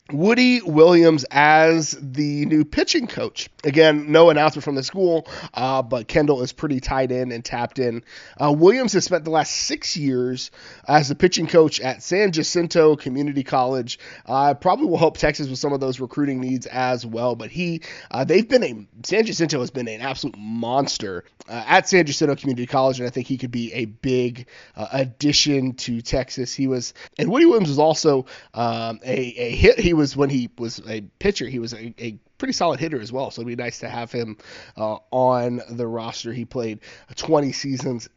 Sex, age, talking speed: male, 30-49, 200 wpm